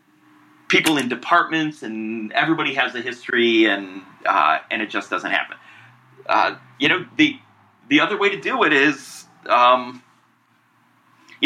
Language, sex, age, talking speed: English, male, 30-49, 145 wpm